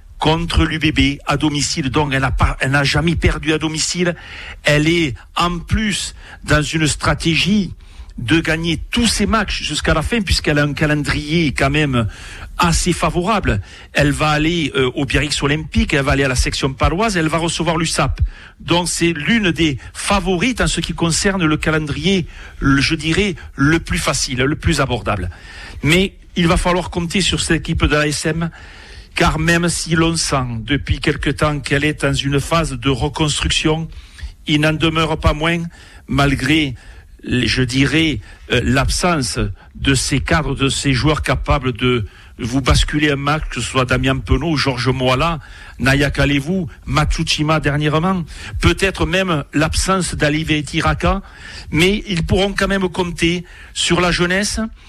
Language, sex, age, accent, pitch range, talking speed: French, male, 60-79, French, 135-170 Hz, 155 wpm